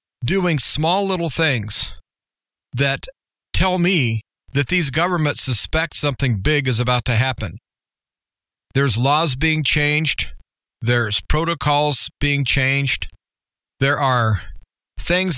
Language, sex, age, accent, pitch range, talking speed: English, male, 40-59, American, 115-145 Hz, 110 wpm